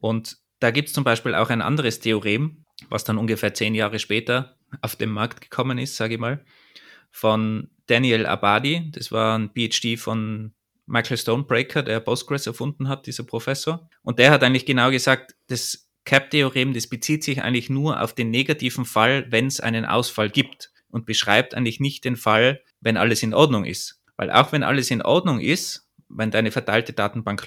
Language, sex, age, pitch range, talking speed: German, male, 20-39, 110-135 Hz, 185 wpm